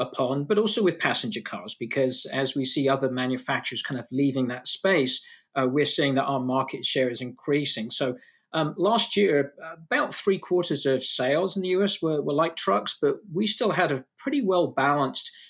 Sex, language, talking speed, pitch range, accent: male, English, 195 wpm, 130-160 Hz, British